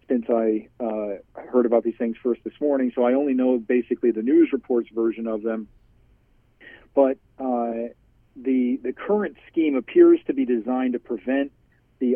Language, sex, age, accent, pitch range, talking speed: English, male, 40-59, American, 115-130 Hz, 170 wpm